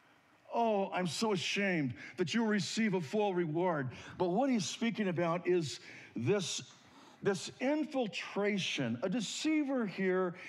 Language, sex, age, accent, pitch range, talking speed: English, male, 60-79, American, 110-170 Hz, 130 wpm